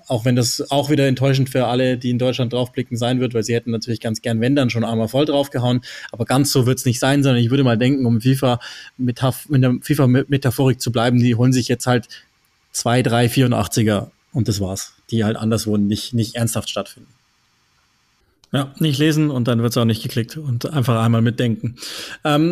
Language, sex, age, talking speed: German, male, 20-39, 210 wpm